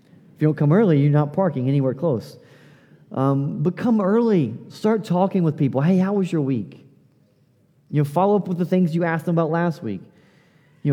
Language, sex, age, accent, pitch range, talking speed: English, male, 30-49, American, 140-175 Hz, 205 wpm